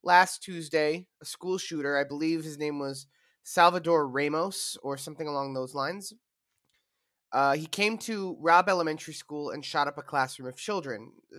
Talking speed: 165 wpm